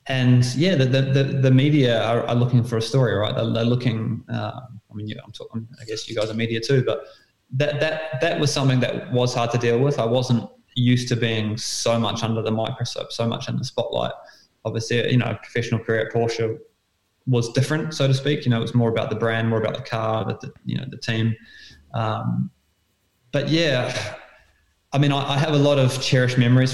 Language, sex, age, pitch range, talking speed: English, male, 20-39, 115-130 Hz, 230 wpm